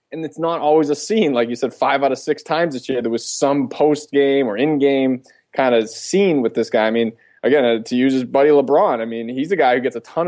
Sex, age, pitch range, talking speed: male, 20-39, 120-150 Hz, 270 wpm